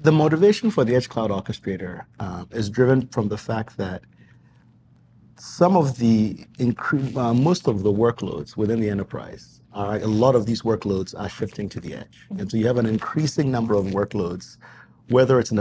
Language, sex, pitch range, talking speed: English, male, 105-125 Hz, 190 wpm